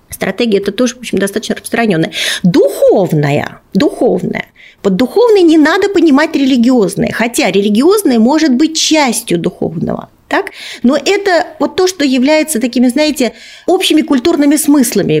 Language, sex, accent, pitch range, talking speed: Russian, female, native, 245-350 Hz, 135 wpm